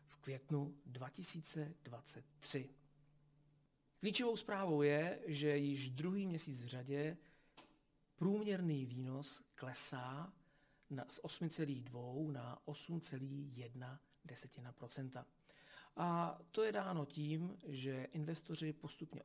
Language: Czech